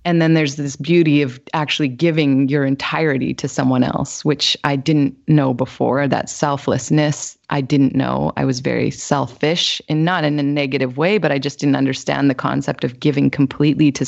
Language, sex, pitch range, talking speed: English, female, 140-175 Hz, 190 wpm